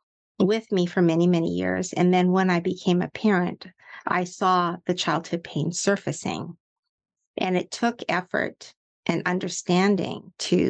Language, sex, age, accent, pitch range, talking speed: English, female, 50-69, American, 175-195 Hz, 145 wpm